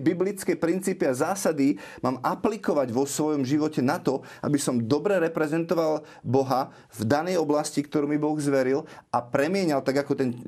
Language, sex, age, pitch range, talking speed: Slovak, male, 30-49, 125-155 Hz, 160 wpm